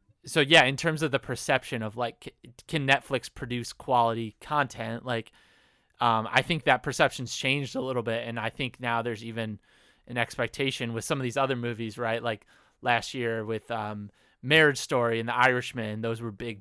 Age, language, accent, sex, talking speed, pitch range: 20-39, English, American, male, 190 wpm, 115-140 Hz